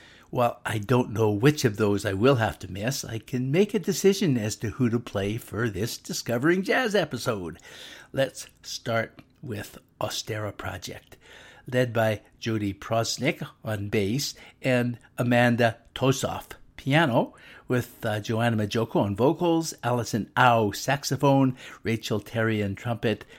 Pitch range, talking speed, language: 105-130 Hz, 140 wpm, English